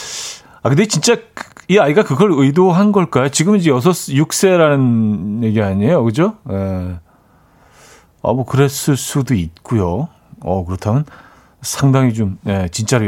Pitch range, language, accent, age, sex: 105-150 Hz, Korean, native, 40-59, male